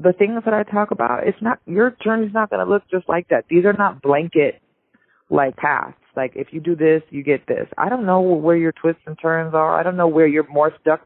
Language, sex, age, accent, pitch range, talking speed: English, female, 30-49, American, 140-175 Hz, 250 wpm